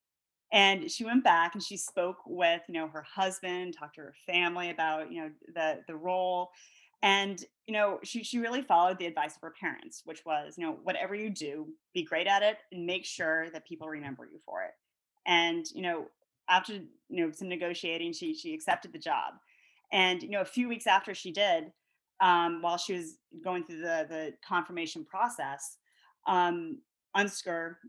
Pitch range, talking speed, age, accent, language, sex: 160-205 Hz, 190 wpm, 30-49, American, English, female